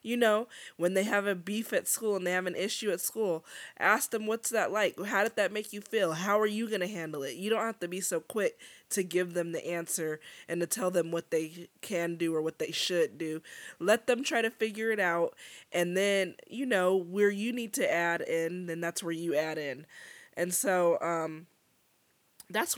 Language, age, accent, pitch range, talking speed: English, 20-39, American, 165-200 Hz, 225 wpm